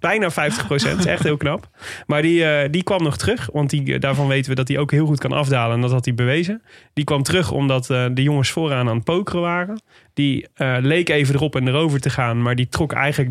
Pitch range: 130-160 Hz